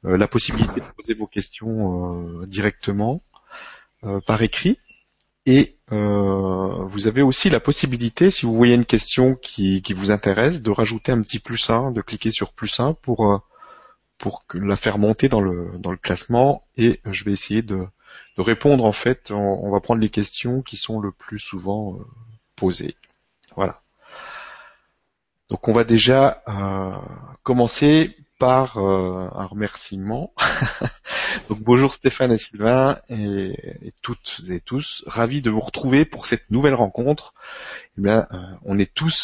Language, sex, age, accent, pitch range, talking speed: French, male, 30-49, French, 100-120 Hz, 160 wpm